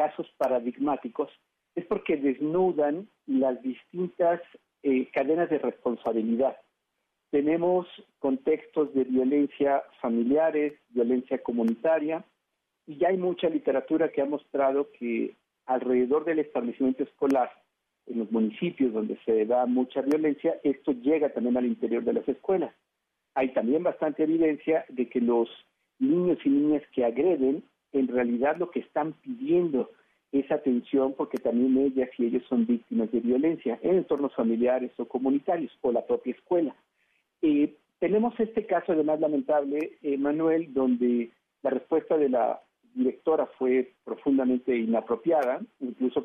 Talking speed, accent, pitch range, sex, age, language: 130 wpm, Mexican, 125-160 Hz, male, 50-69, Spanish